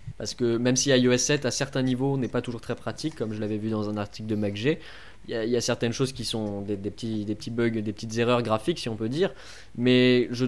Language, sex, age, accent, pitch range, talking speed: French, male, 20-39, French, 110-140 Hz, 270 wpm